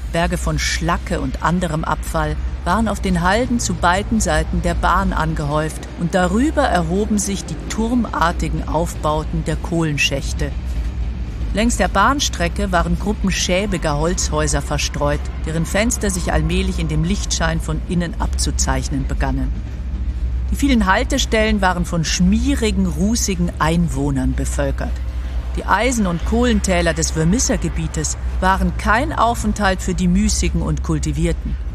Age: 50-69